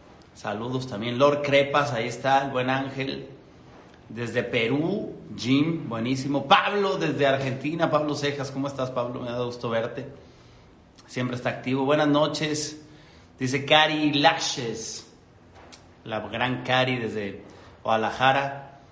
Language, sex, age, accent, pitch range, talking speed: Spanish, male, 40-59, Mexican, 125-155 Hz, 120 wpm